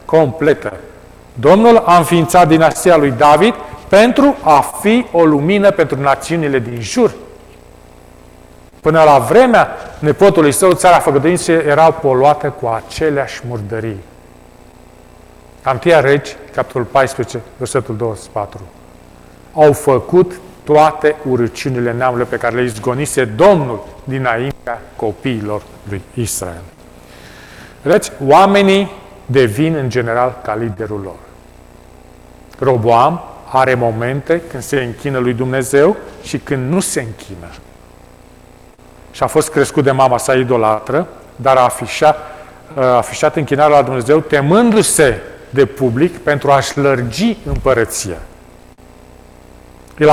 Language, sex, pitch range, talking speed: Romanian, male, 95-150 Hz, 110 wpm